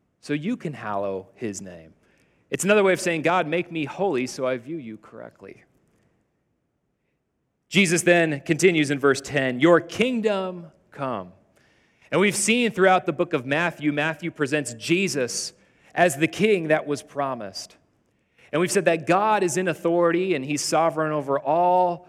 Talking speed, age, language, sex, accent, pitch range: 160 wpm, 30-49, English, male, American, 135-185 Hz